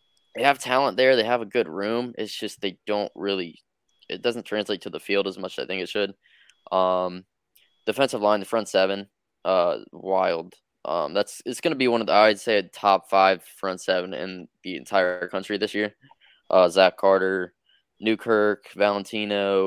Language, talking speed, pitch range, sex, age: English, 185 wpm, 95-110 Hz, male, 20-39